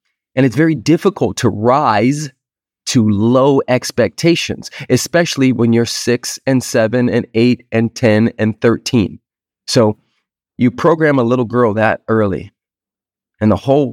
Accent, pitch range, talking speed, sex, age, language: American, 110-135 Hz, 140 wpm, male, 30-49, English